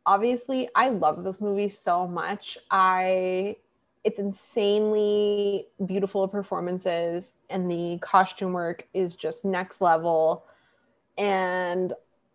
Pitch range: 185-230 Hz